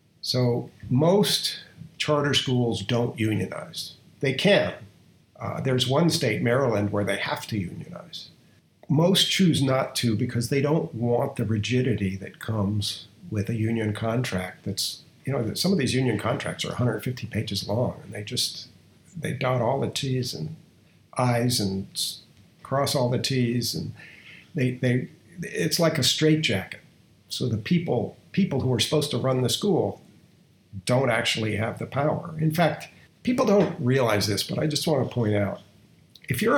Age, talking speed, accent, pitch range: 50-69, 160 wpm, American, 110-150 Hz